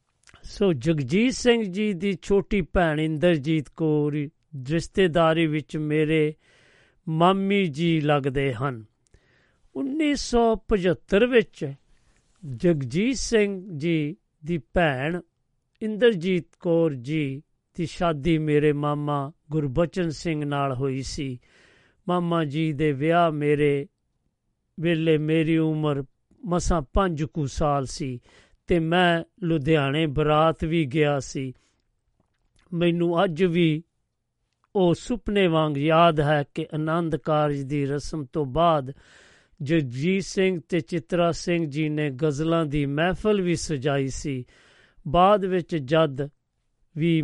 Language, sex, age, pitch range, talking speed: Punjabi, male, 50-69, 145-175 Hz, 110 wpm